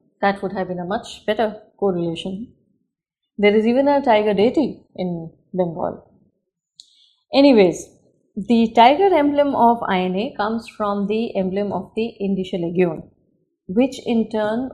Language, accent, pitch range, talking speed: English, Indian, 190-235 Hz, 135 wpm